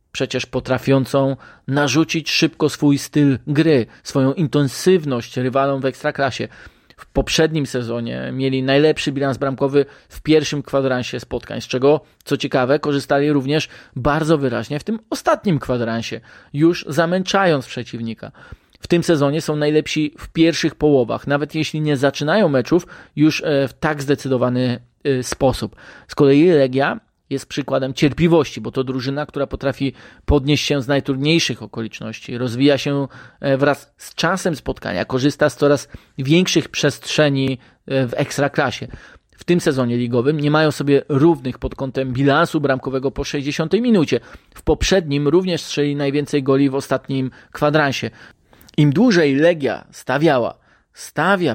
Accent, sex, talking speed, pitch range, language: native, male, 135 wpm, 130-150 Hz, Polish